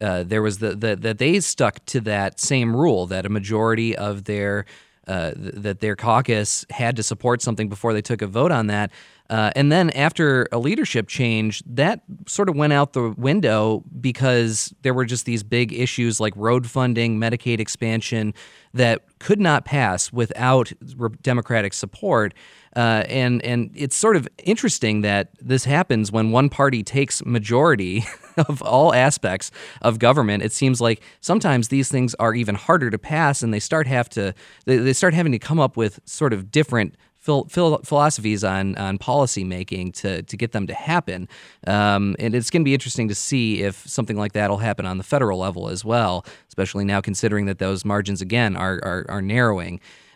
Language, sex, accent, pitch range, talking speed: English, male, American, 105-135 Hz, 190 wpm